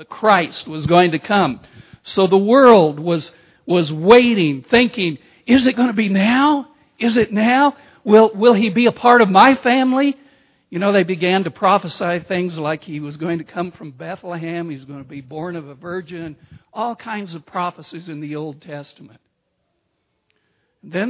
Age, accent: 60-79, American